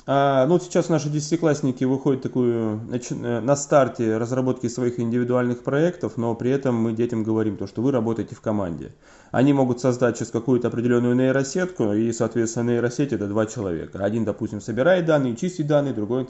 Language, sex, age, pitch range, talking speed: Russian, male, 20-39, 105-125 Hz, 165 wpm